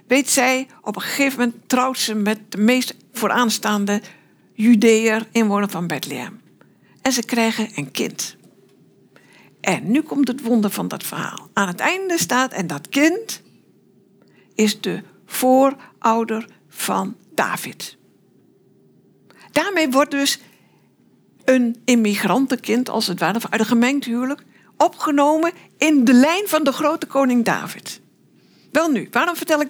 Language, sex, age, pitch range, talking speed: Dutch, female, 60-79, 210-275 Hz, 135 wpm